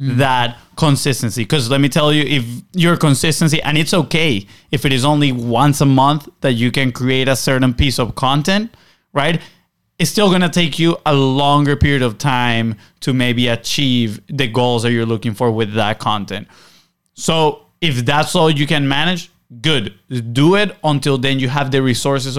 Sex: male